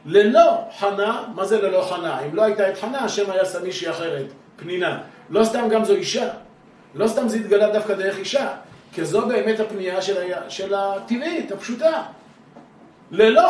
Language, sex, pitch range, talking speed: Hebrew, male, 190-255 Hz, 165 wpm